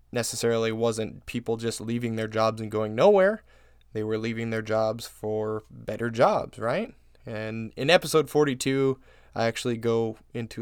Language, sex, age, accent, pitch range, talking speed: English, male, 20-39, American, 110-130 Hz, 155 wpm